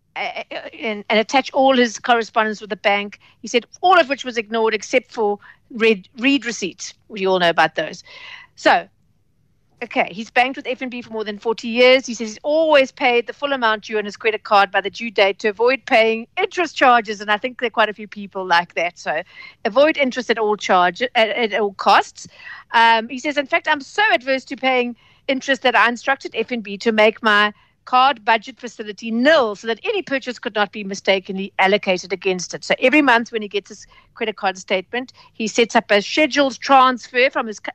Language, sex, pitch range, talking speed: English, female, 210-265 Hz, 200 wpm